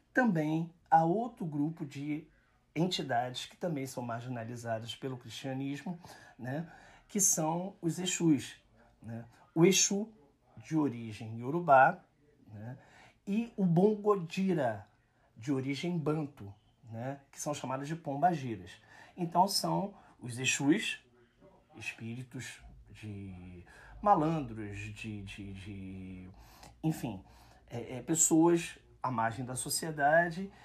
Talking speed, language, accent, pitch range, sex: 95 wpm, Portuguese, Brazilian, 120-160 Hz, male